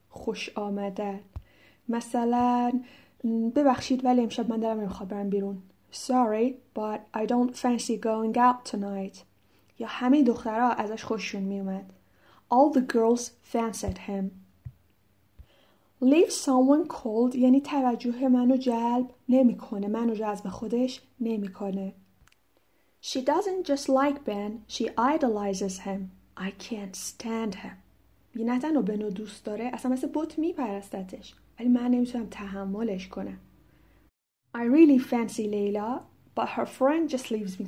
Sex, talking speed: female, 125 wpm